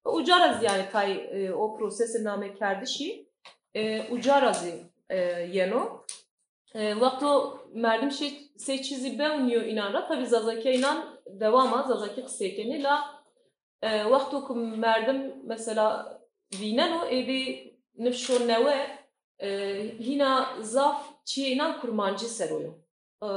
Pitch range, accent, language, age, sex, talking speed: 215-280 Hz, native, Turkish, 30-49, female, 105 wpm